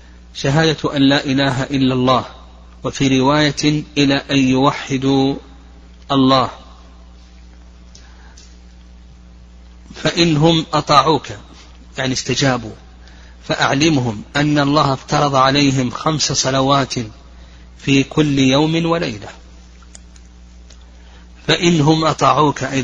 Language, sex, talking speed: Arabic, male, 75 wpm